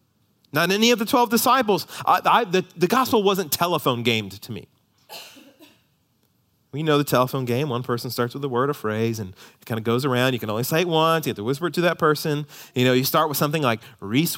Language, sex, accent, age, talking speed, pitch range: English, male, American, 30-49, 225 wpm, 125-195 Hz